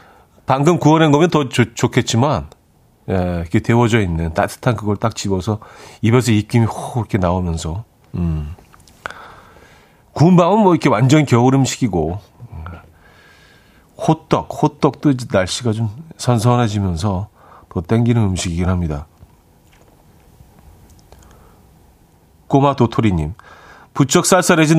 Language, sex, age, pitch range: Korean, male, 40-59, 95-145 Hz